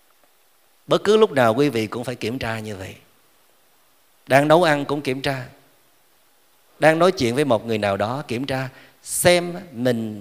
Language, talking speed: Vietnamese, 175 wpm